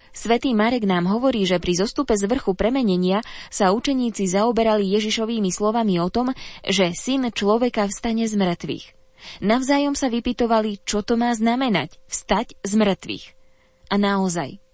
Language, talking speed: Slovak, 145 wpm